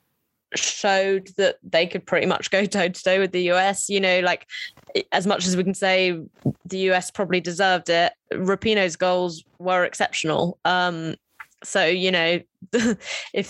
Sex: female